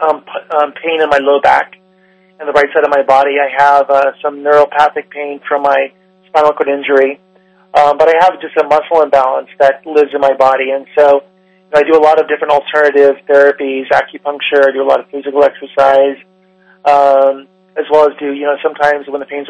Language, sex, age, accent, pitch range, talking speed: English, male, 30-49, American, 140-170 Hz, 205 wpm